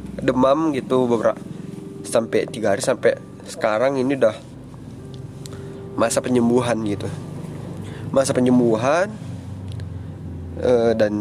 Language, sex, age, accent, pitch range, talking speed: Indonesian, male, 20-39, native, 110-150 Hz, 85 wpm